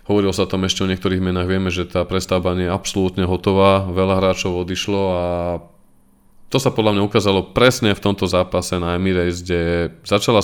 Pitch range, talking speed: 90-100 Hz, 180 wpm